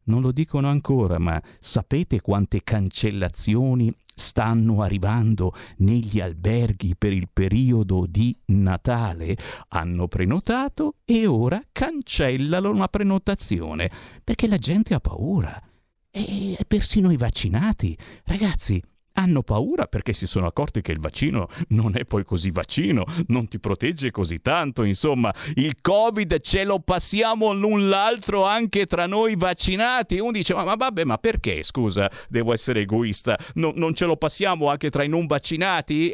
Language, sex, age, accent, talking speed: Italian, male, 50-69, native, 145 wpm